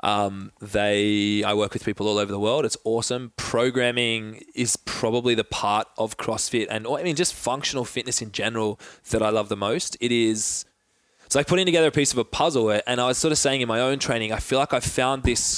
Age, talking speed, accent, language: 20-39, 235 wpm, Australian, English